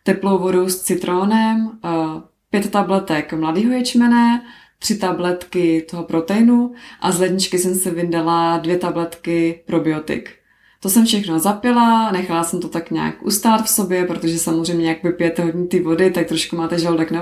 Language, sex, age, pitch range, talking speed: Czech, female, 20-39, 170-210 Hz, 155 wpm